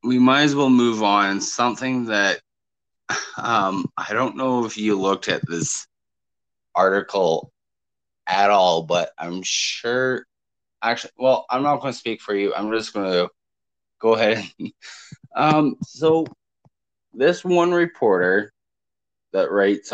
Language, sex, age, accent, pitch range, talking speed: English, male, 20-39, American, 95-120 Hz, 135 wpm